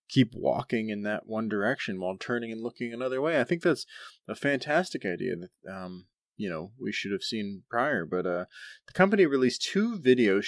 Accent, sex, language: American, male, English